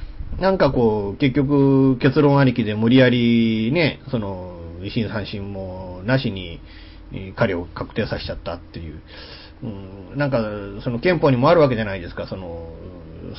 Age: 40-59